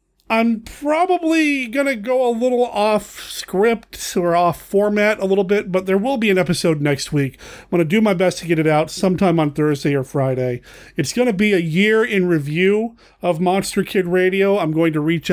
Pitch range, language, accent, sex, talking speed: 155-205 Hz, English, American, male, 210 wpm